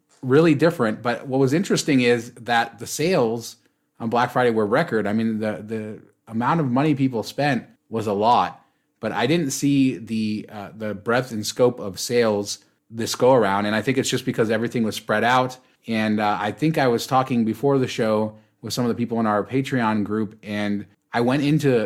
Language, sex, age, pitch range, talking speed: English, male, 30-49, 105-125 Hz, 205 wpm